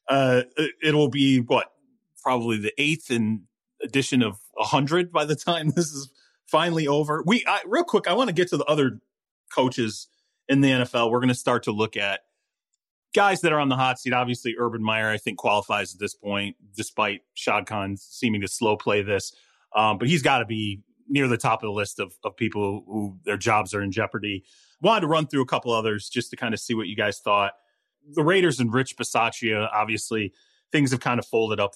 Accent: American